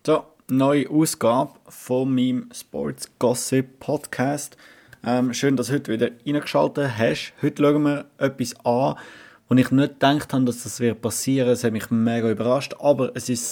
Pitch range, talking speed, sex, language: 120-140 Hz, 170 wpm, male, German